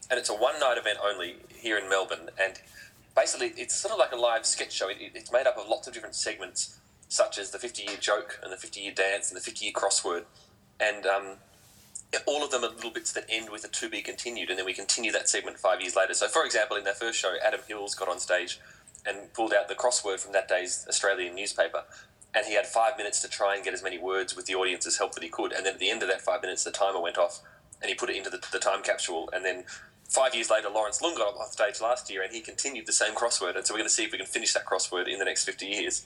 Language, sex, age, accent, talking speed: English, male, 20-39, Australian, 265 wpm